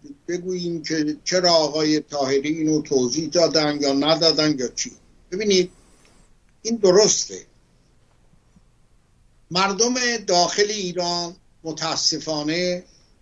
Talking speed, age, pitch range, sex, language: 85 wpm, 60-79, 125-185 Hz, male, Persian